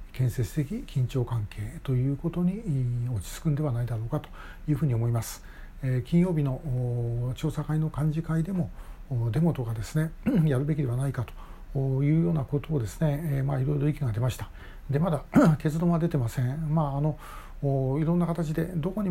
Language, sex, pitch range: Japanese, male, 120-155 Hz